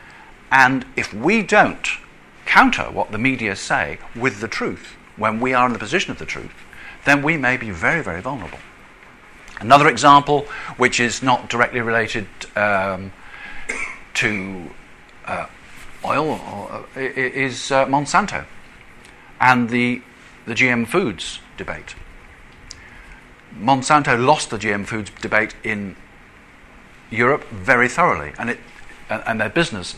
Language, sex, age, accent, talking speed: English, male, 50-69, British, 130 wpm